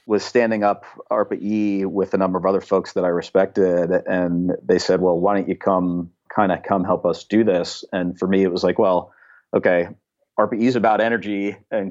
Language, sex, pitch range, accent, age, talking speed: English, male, 85-95 Hz, American, 30-49, 210 wpm